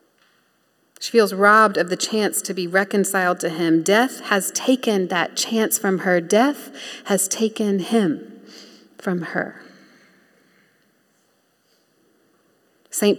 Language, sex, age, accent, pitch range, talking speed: English, female, 30-49, American, 195-230 Hz, 115 wpm